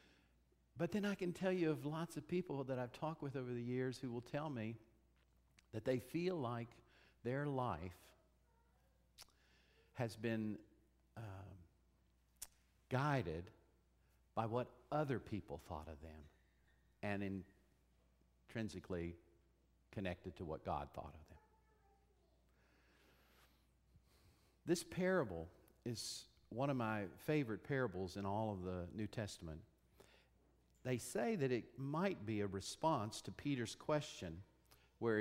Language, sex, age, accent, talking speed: English, male, 50-69, American, 125 wpm